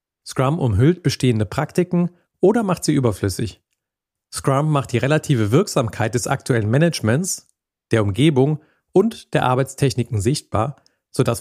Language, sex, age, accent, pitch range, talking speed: German, male, 40-59, German, 110-150 Hz, 120 wpm